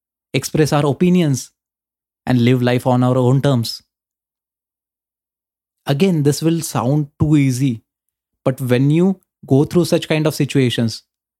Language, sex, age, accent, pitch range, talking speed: Hindi, male, 20-39, native, 120-155 Hz, 130 wpm